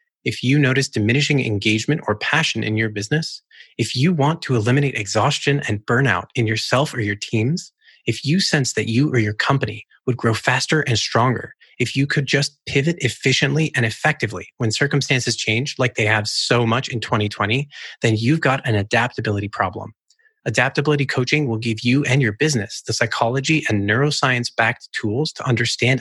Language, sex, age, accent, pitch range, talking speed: English, male, 30-49, American, 115-145 Hz, 175 wpm